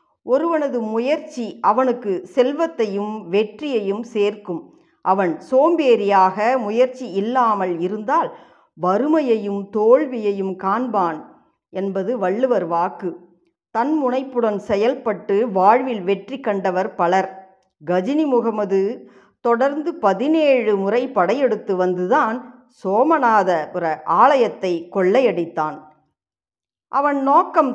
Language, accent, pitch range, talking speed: Tamil, native, 190-255 Hz, 80 wpm